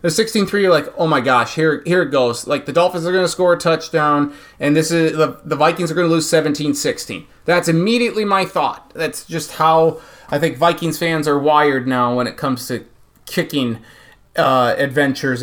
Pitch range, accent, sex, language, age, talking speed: 150-190 Hz, American, male, English, 30-49, 200 wpm